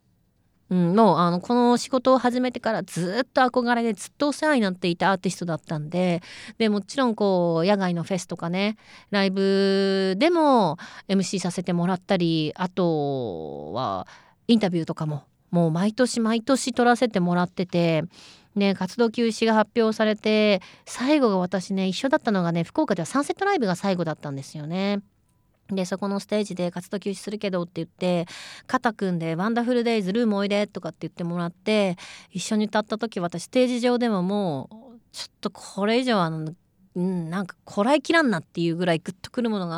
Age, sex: 40-59, female